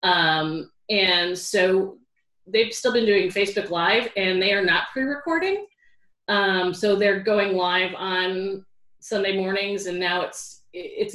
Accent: American